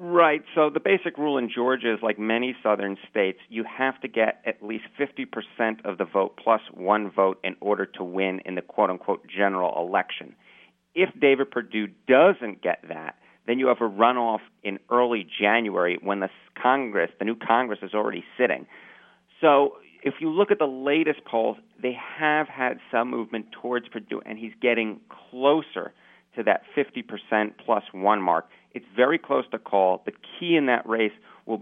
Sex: male